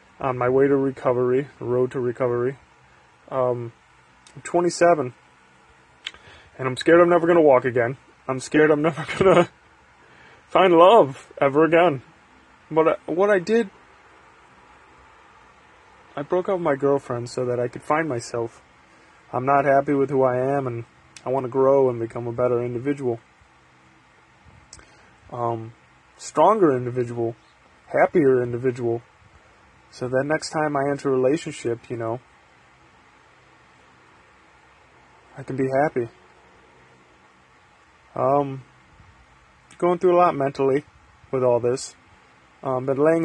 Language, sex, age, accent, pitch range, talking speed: English, male, 20-39, American, 110-140 Hz, 130 wpm